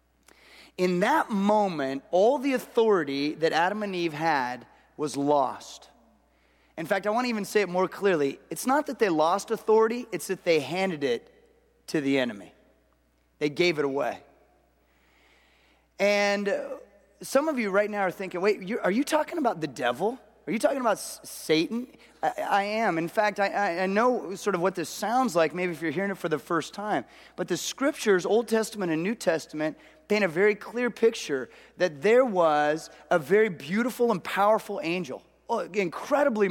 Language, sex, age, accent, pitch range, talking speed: English, male, 30-49, American, 160-215 Hz, 175 wpm